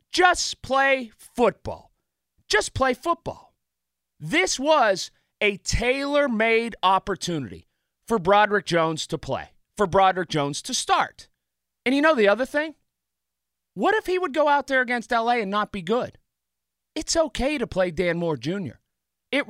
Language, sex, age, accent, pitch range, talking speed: English, male, 40-59, American, 170-275 Hz, 150 wpm